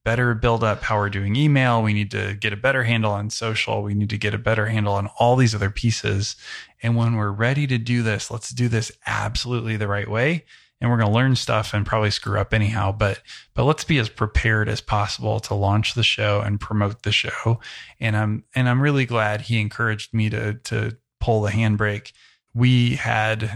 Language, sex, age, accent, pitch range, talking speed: English, male, 20-39, American, 105-115 Hz, 215 wpm